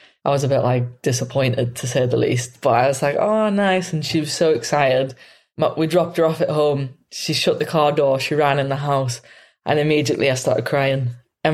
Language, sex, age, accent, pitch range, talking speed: English, female, 20-39, British, 130-155 Hz, 225 wpm